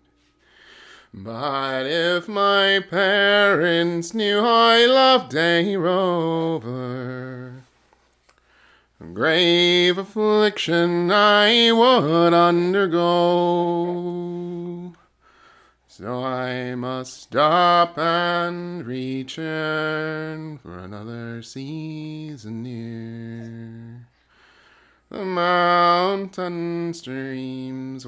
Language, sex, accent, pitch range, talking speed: English, male, American, 115-175 Hz, 60 wpm